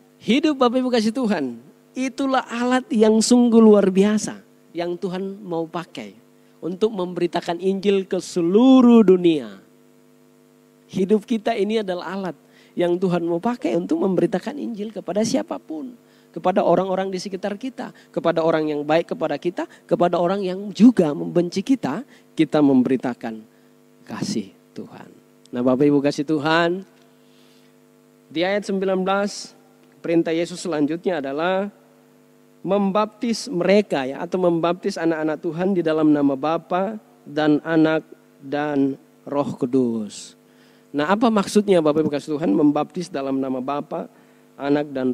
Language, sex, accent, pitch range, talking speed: Indonesian, male, native, 160-215 Hz, 125 wpm